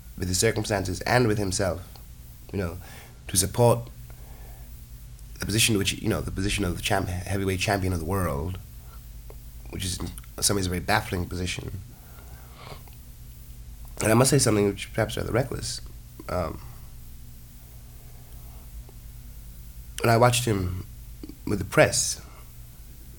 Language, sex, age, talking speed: English, male, 30-49, 130 wpm